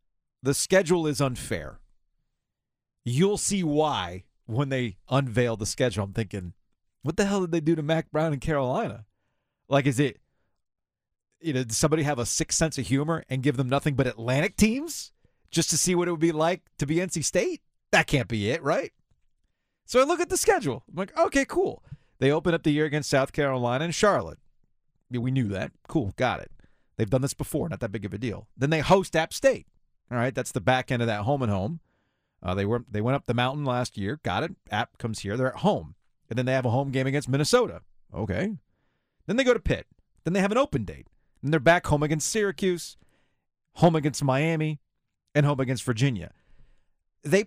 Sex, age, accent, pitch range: male, 40-59, American, 120-165 Hz